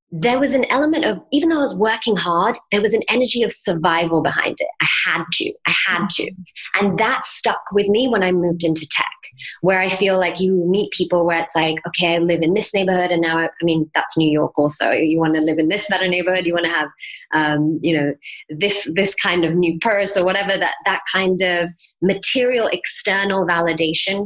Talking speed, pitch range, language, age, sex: 220 wpm, 170-215 Hz, English, 20-39, female